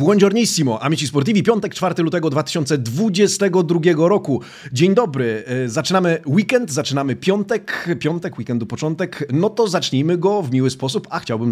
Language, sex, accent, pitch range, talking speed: Polish, male, native, 135-185 Hz, 135 wpm